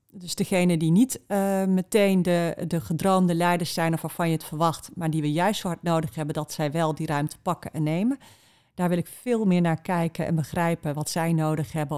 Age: 40-59